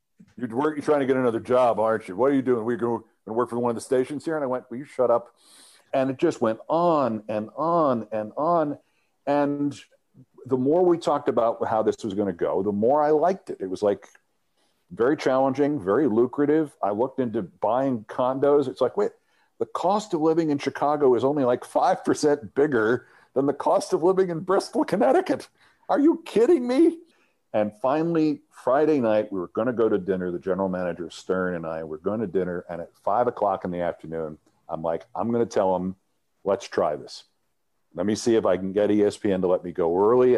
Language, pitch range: English, 105-150 Hz